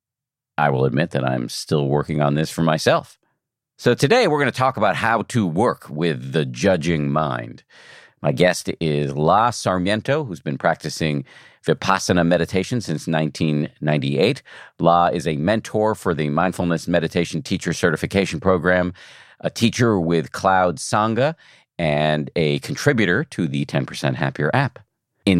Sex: male